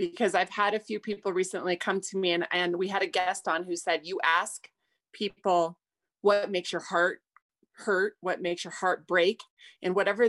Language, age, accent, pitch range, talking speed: English, 30-49, American, 175-210 Hz, 200 wpm